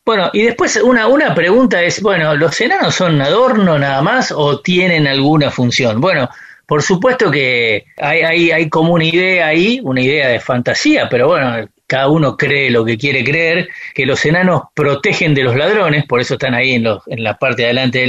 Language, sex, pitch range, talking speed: Spanish, male, 130-175 Hz, 200 wpm